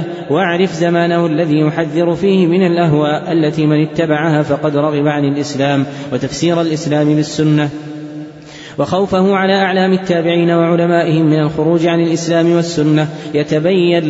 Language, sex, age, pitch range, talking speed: Arabic, male, 20-39, 150-170 Hz, 120 wpm